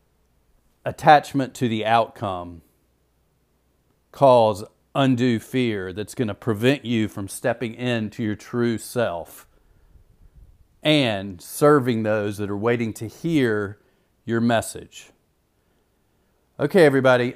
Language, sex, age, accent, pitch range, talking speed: English, male, 40-59, American, 110-130 Hz, 105 wpm